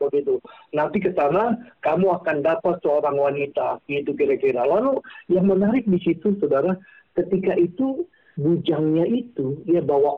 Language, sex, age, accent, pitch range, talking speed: Indonesian, male, 50-69, native, 155-190 Hz, 135 wpm